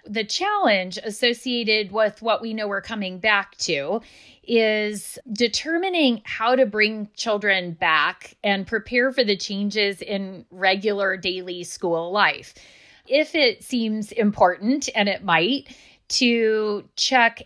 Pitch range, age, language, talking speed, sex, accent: 185-225 Hz, 30-49, English, 125 wpm, female, American